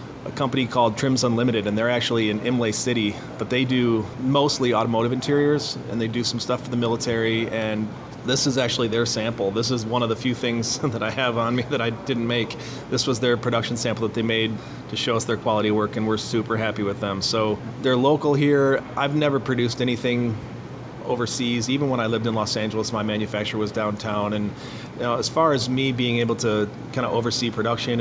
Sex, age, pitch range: male, 30-49, 110-125 Hz